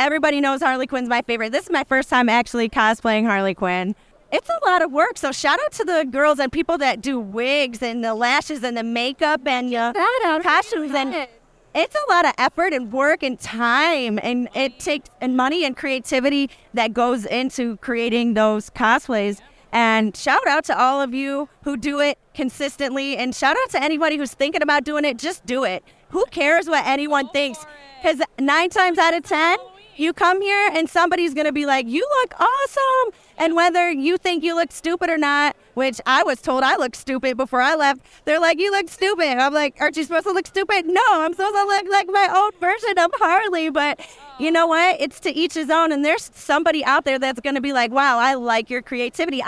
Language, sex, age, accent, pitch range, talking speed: English, female, 30-49, American, 250-325 Hz, 215 wpm